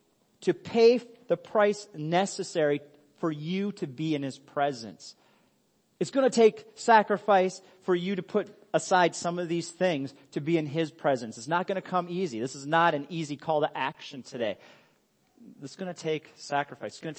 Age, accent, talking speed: 30-49, American, 190 wpm